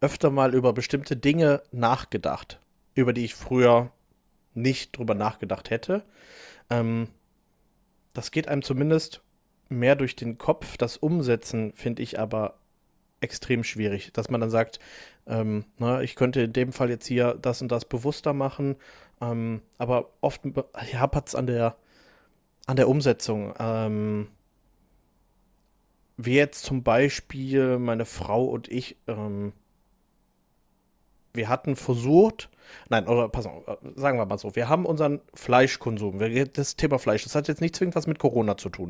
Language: German